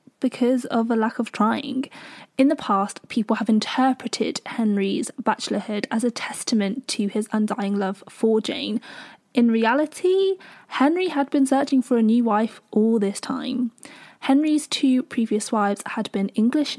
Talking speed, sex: 155 wpm, female